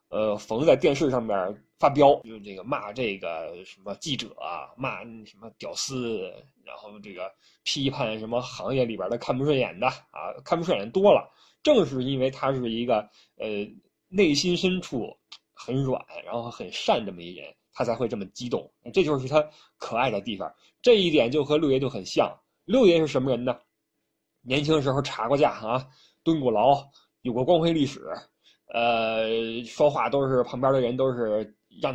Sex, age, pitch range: male, 20-39, 120-160 Hz